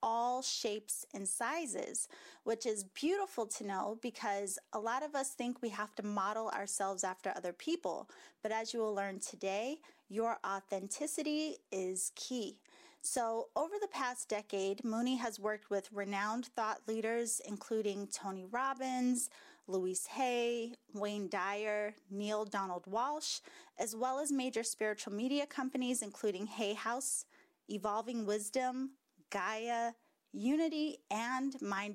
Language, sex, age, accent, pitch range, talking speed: English, female, 30-49, American, 205-265 Hz, 135 wpm